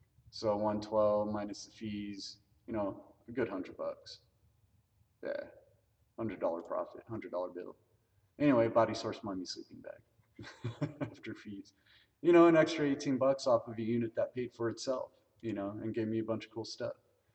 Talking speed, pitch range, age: 175 wpm, 105-120 Hz, 30-49